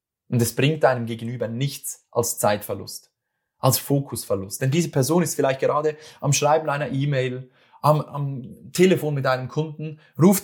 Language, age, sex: German, 30-49, male